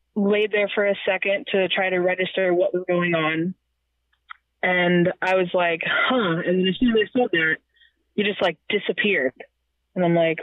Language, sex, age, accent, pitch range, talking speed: English, female, 20-39, American, 175-220 Hz, 190 wpm